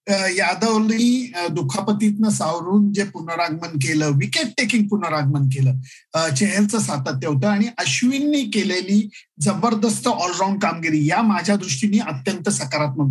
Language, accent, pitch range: Marathi, native, 195-235 Hz